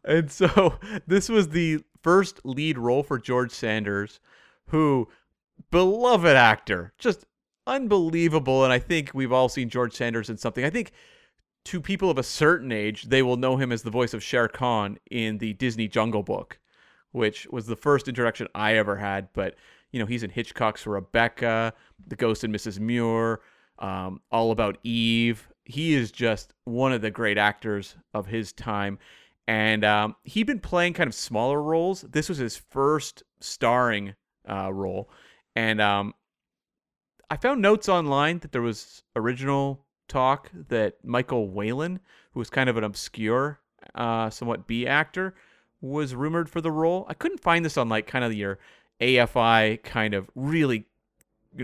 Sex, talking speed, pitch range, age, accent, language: male, 165 wpm, 110-150 Hz, 30-49, American, English